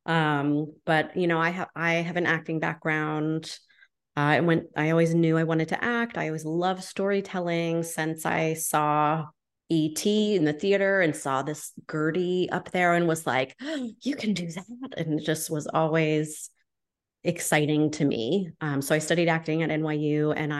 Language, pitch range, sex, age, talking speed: English, 150-185 Hz, female, 30-49, 175 wpm